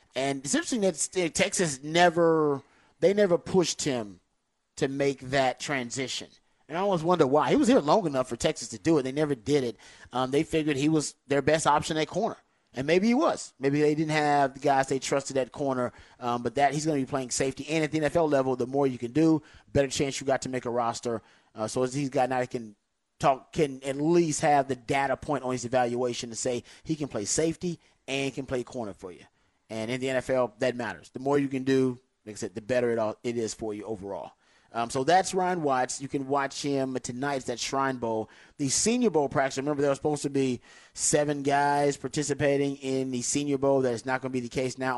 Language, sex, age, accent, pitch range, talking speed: English, male, 30-49, American, 125-150 Hz, 235 wpm